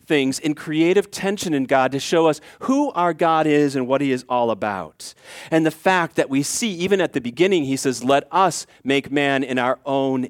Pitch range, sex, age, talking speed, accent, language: 130-175 Hz, male, 40-59, 220 wpm, American, English